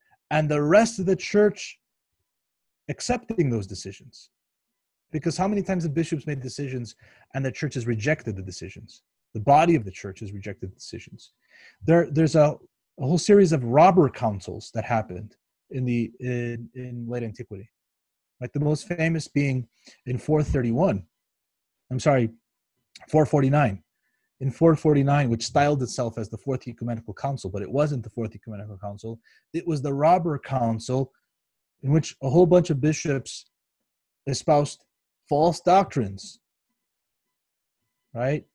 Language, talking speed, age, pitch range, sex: English, 145 wpm, 30-49, 115-155 Hz, male